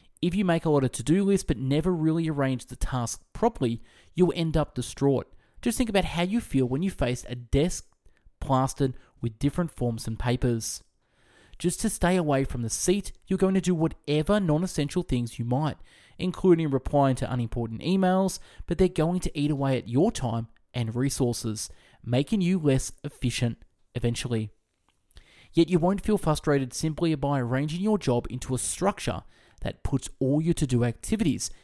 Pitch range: 120-165 Hz